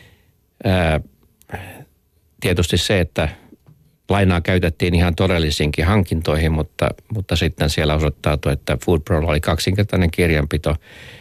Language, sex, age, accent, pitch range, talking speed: Finnish, male, 50-69, native, 80-95 Hz, 95 wpm